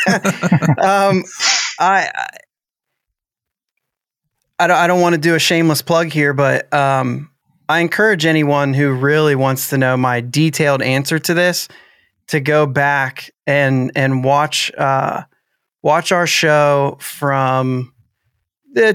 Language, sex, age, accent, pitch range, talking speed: English, male, 30-49, American, 140-175 Hz, 125 wpm